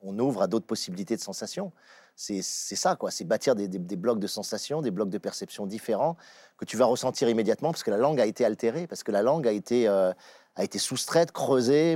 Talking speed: 235 wpm